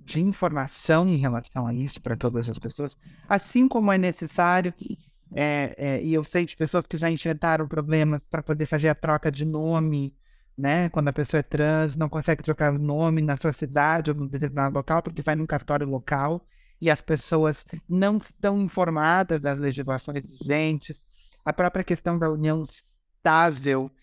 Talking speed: 175 wpm